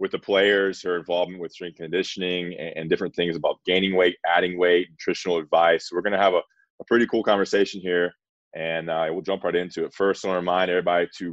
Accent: American